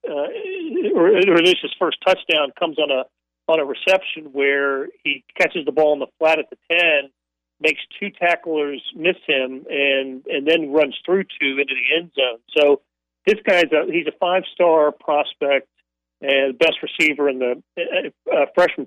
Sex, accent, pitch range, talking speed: male, American, 140-185 Hz, 165 wpm